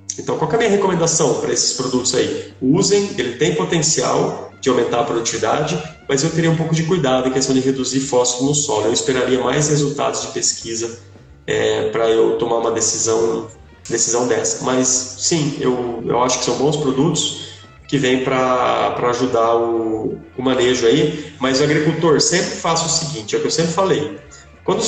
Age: 30-49